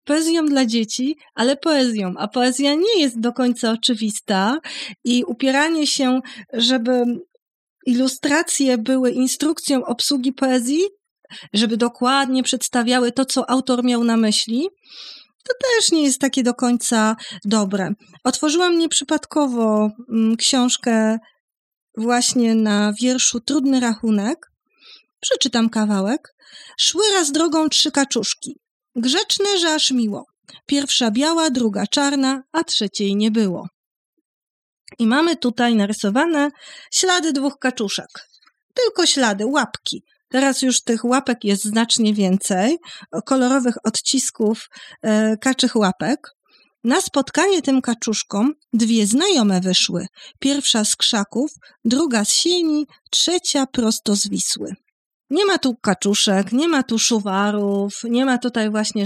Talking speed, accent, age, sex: 115 wpm, native, 30-49, female